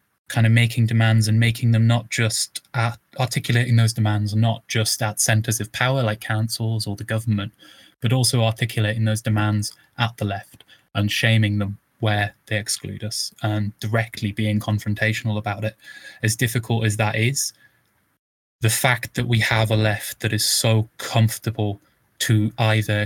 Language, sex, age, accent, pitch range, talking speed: English, male, 10-29, British, 105-120 Hz, 160 wpm